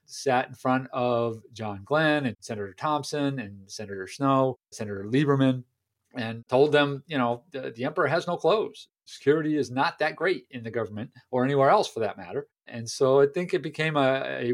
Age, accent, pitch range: 40-59, American, 120-140 Hz